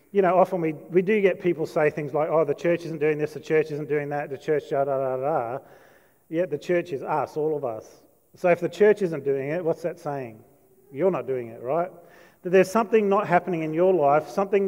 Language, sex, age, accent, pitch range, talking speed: English, male, 40-59, Australian, 150-190 Hz, 250 wpm